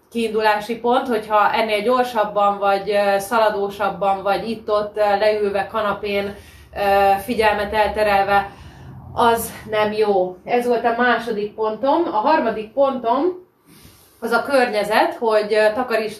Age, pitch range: 30-49, 205-230 Hz